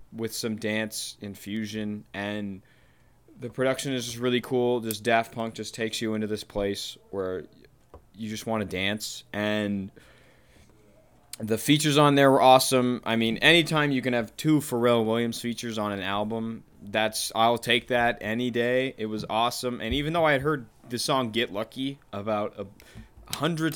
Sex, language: male, English